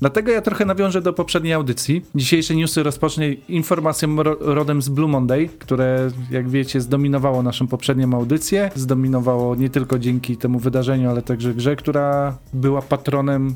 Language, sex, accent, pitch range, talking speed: Polish, male, native, 140-165 Hz, 150 wpm